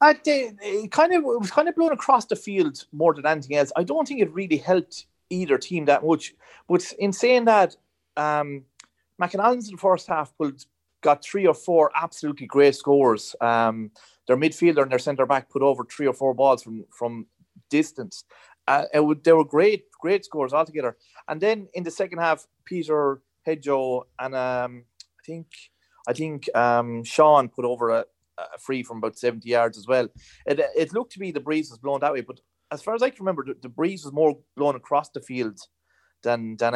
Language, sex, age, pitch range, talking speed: English, male, 30-49, 120-175 Hz, 205 wpm